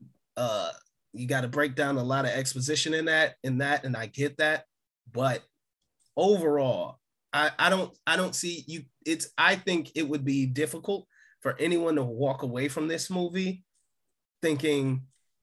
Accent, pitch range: American, 135-170 Hz